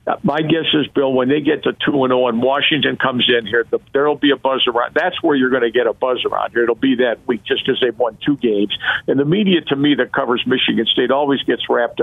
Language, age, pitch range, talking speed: English, 50-69, 125-150 Hz, 260 wpm